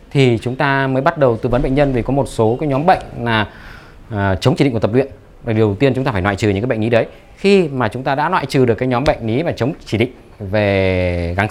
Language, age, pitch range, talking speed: Vietnamese, 20-39, 105-140 Hz, 290 wpm